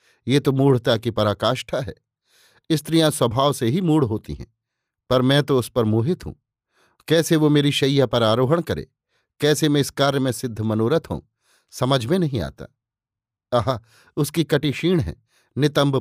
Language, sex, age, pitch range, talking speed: Hindi, male, 50-69, 120-145 Hz, 165 wpm